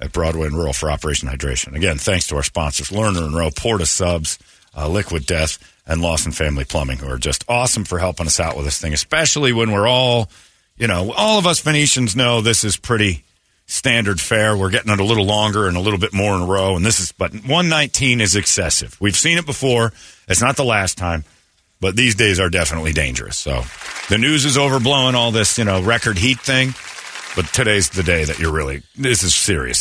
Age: 50-69